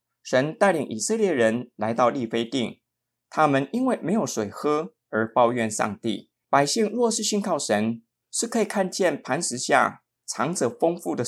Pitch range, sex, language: 115-150 Hz, male, Chinese